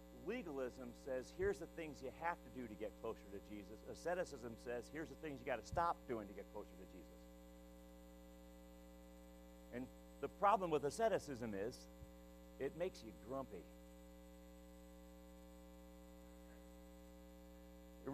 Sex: male